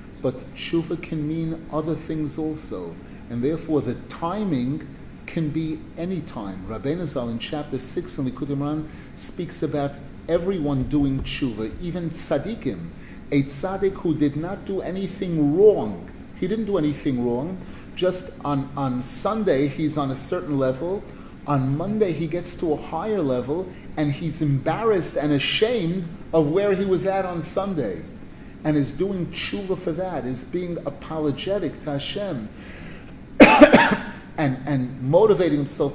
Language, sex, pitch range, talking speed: English, male, 145-185 Hz, 145 wpm